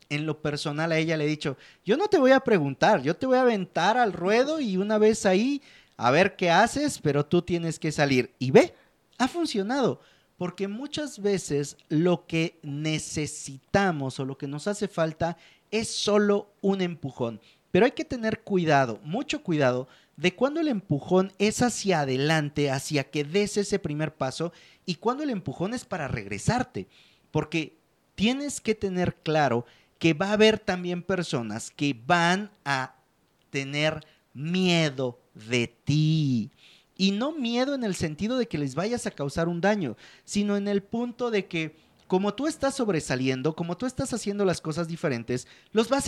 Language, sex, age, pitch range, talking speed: Spanish, male, 40-59, 145-210 Hz, 170 wpm